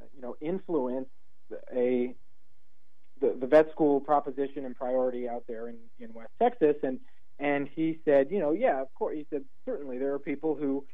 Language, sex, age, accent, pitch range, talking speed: English, male, 40-59, American, 130-160 Hz, 180 wpm